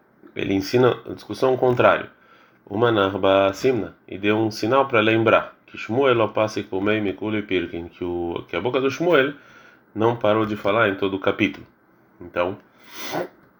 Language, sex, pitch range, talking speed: Portuguese, male, 95-105 Hz, 160 wpm